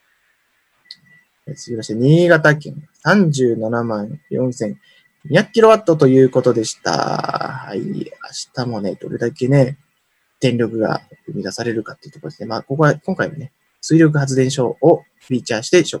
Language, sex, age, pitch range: Japanese, male, 20-39, 120-165 Hz